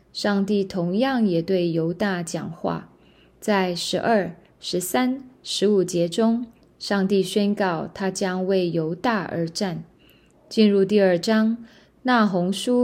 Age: 20-39